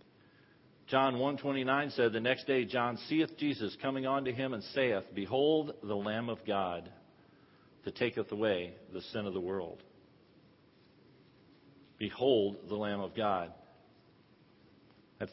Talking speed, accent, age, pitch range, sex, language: 135 wpm, American, 50-69, 110-150 Hz, male, English